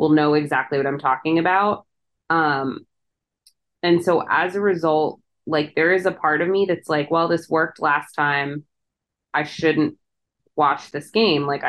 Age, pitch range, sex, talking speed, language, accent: 20-39, 150-180 Hz, female, 170 wpm, English, American